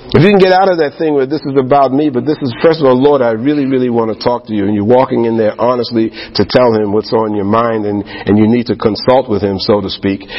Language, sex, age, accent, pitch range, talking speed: English, male, 50-69, American, 110-130 Hz, 300 wpm